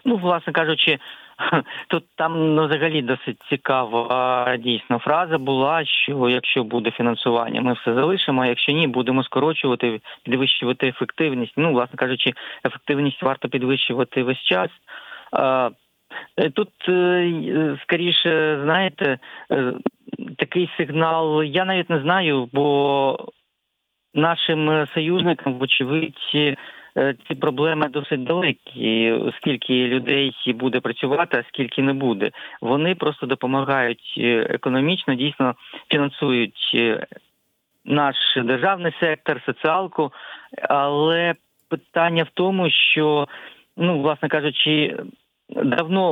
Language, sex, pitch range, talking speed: Ukrainian, male, 130-160 Hz, 100 wpm